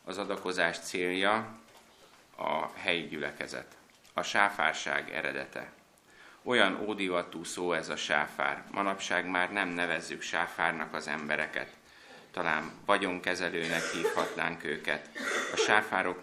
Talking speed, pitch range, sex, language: 105 wpm, 80-95 Hz, male, Hungarian